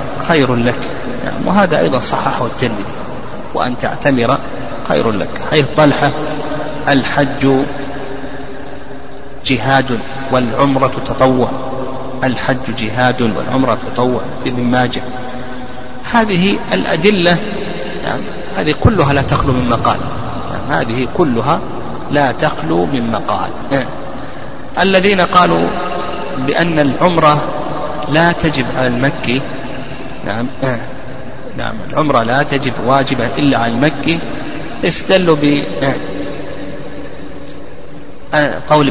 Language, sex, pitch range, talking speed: Arabic, male, 125-150 Hz, 90 wpm